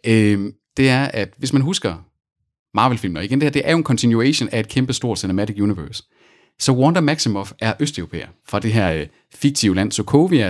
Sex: male